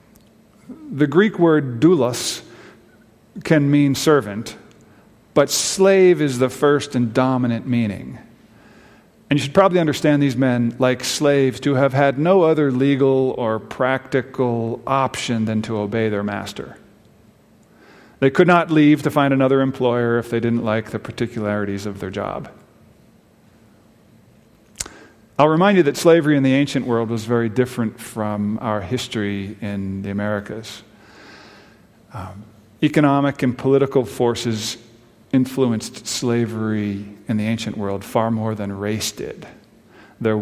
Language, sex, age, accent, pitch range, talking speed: English, male, 40-59, American, 110-135 Hz, 135 wpm